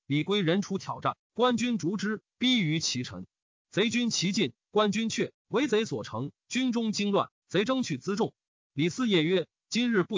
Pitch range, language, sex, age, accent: 145-210 Hz, Chinese, male, 30-49, native